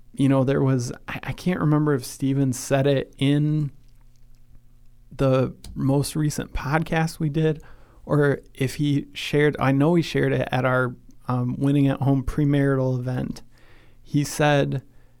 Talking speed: 145 wpm